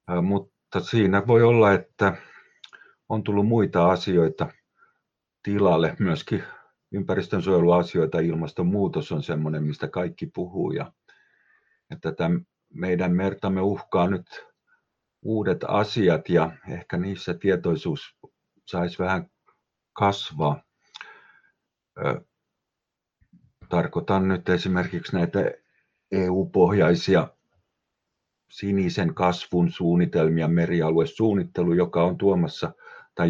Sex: male